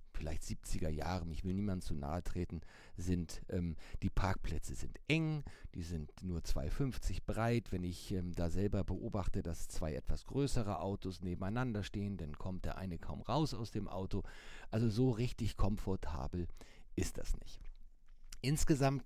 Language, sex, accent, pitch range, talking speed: German, male, German, 85-105 Hz, 155 wpm